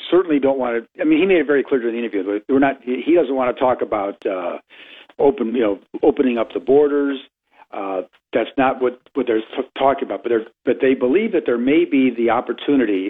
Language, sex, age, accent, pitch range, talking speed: English, male, 50-69, American, 120-150 Hz, 235 wpm